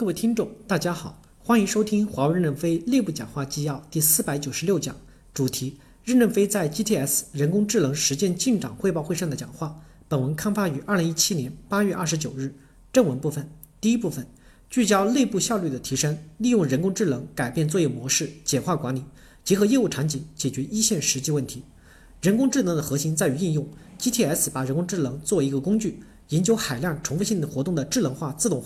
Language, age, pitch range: Chinese, 50-69, 140-205 Hz